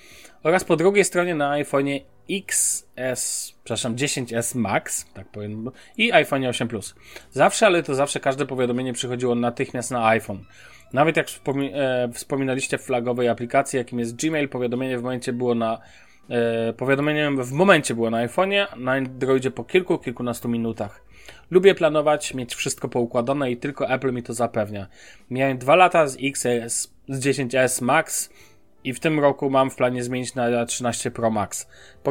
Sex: male